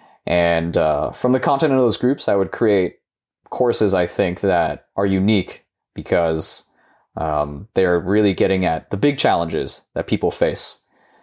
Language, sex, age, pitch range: English, male, 20-39, 95-125 Hz